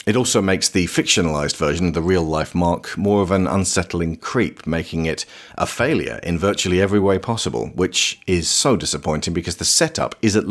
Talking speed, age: 195 wpm, 40-59